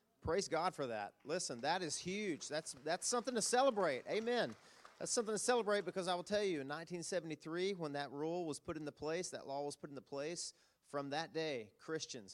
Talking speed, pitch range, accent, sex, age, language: 205 wpm, 135-160 Hz, American, male, 40-59, English